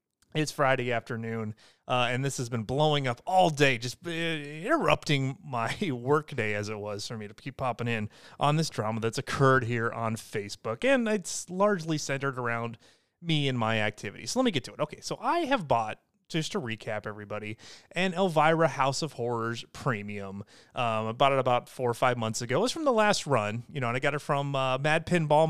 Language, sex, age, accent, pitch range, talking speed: English, male, 30-49, American, 120-165 Hz, 210 wpm